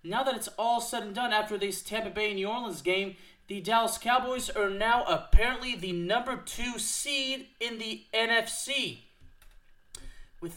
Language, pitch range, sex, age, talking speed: English, 180-230 Hz, male, 30-49, 160 wpm